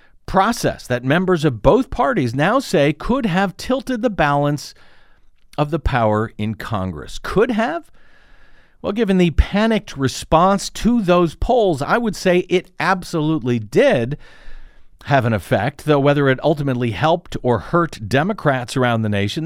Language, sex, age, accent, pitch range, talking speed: English, male, 50-69, American, 130-185 Hz, 150 wpm